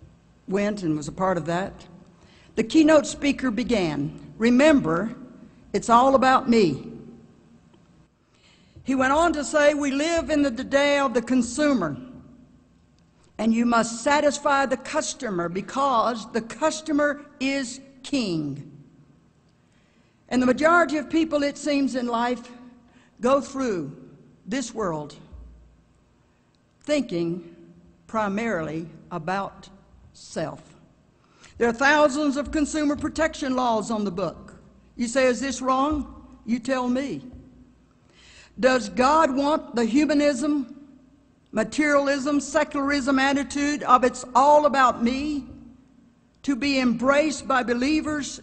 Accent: American